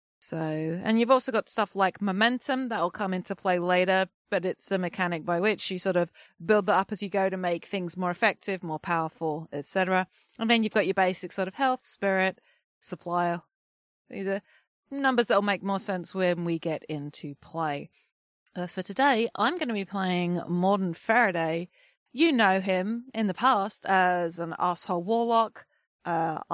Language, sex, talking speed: English, female, 185 wpm